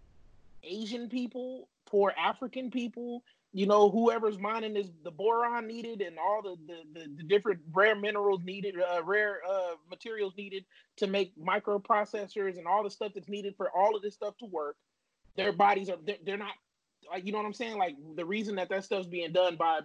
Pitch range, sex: 165-210 Hz, male